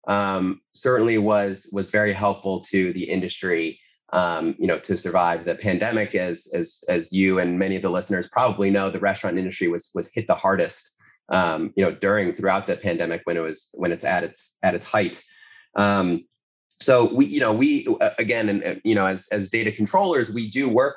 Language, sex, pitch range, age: English, male, 95-110 Hz, 30-49